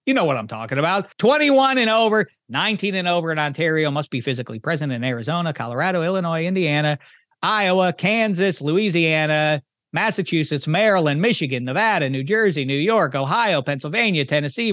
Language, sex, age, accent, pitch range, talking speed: English, male, 40-59, American, 150-205 Hz, 150 wpm